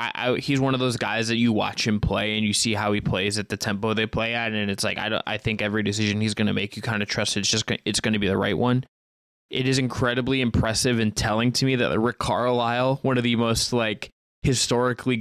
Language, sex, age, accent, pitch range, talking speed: English, male, 20-39, American, 110-130 Hz, 270 wpm